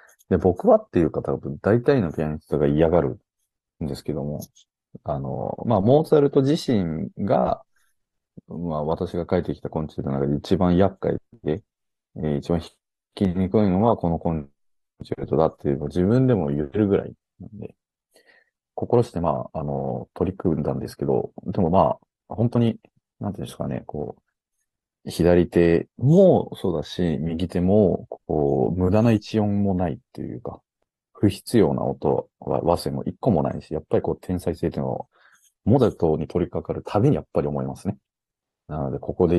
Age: 40-59